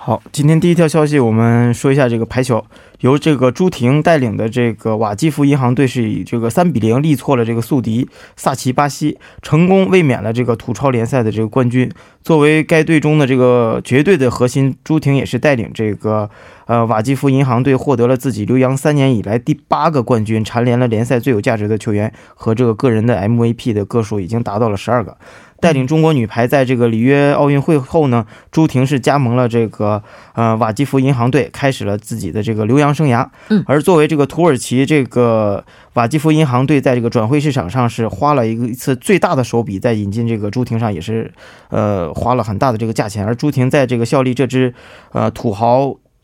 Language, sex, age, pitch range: Korean, male, 20-39, 115-140 Hz